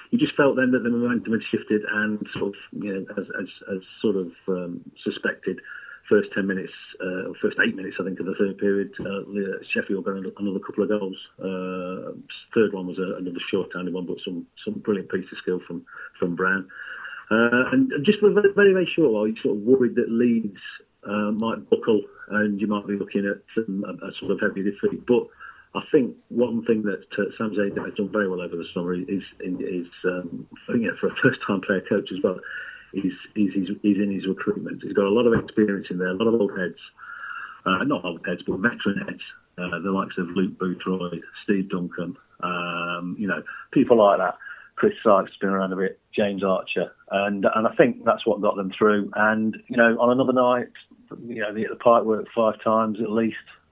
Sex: male